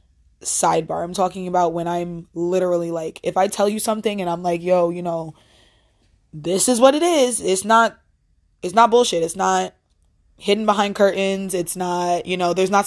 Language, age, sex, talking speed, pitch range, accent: English, 20-39, female, 185 wpm, 175-210 Hz, American